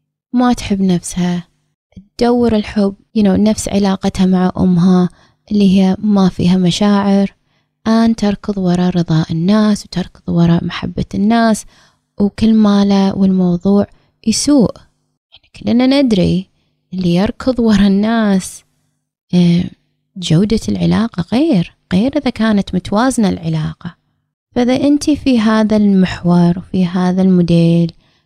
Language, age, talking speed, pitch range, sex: Arabic, 20-39, 110 wpm, 180-215 Hz, female